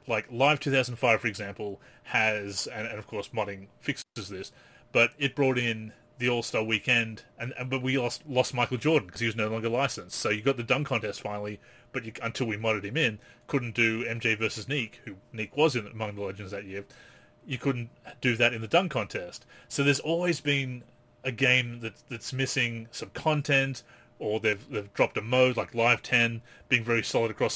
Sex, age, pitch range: male, 30-49, 115-135 Hz